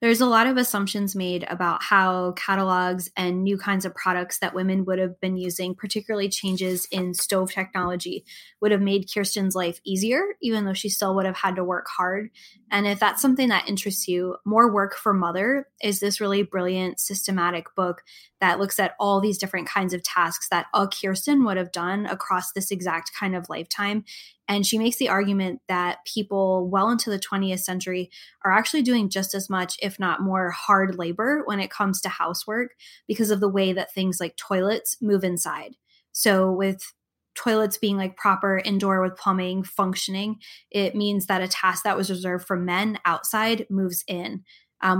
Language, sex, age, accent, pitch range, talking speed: English, female, 10-29, American, 185-210 Hz, 190 wpm